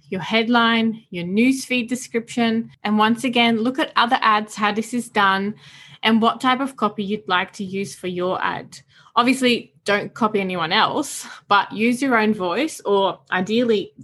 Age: 20-39